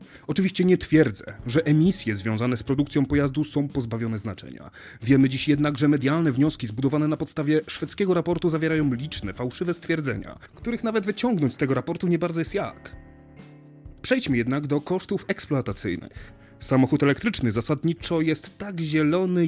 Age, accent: 30-49, native